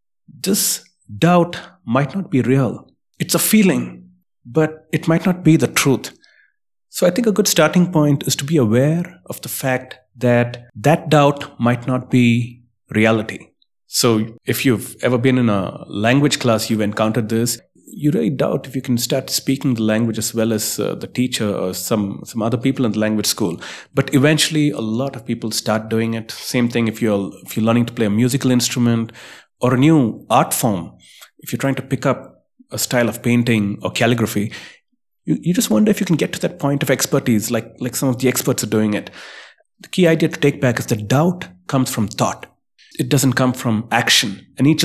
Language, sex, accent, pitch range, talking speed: English, male, Indian, 115-140 Hz, 205 wpm